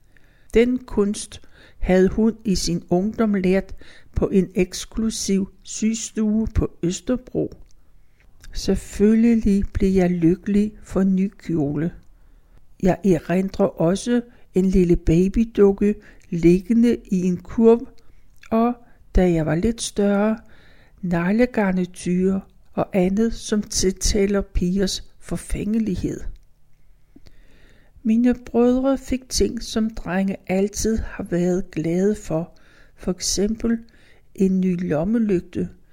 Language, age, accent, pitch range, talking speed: Danish, 60-79, native, 180-225 Hz, 100 wpm